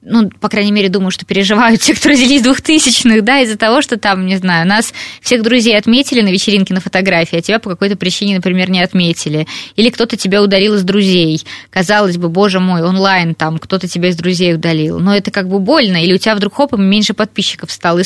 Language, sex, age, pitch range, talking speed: Russian, female, 20-39, 180-225 Hz, 220 wpm